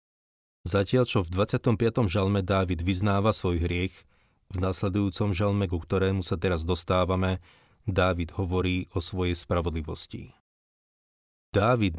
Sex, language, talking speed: male, Slovak, 115 wpm